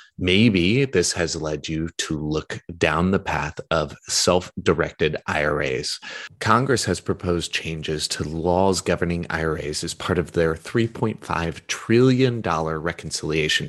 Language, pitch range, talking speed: English, 80-100 Hz, 125 wpm